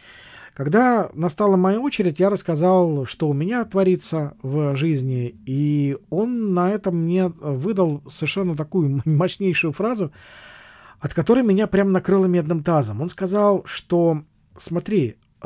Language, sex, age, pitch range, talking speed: Russian, male, 40-59, 135-185 Hz, 130 wpm